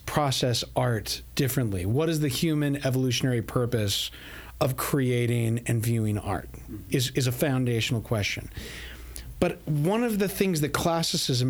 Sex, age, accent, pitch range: male, 40-59, American, 110-140 Hz